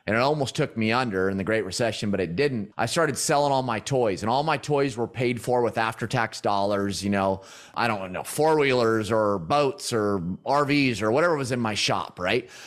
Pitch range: 115-155 Hz